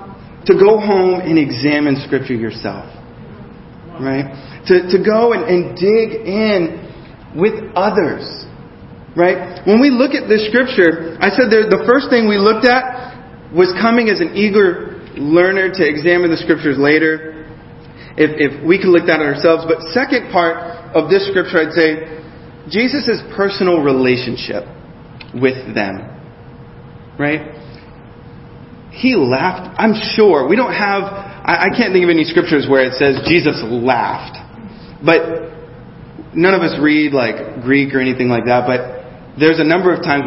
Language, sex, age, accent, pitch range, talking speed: English, male, 30-49, American, 140-195 Hz, 150 wpm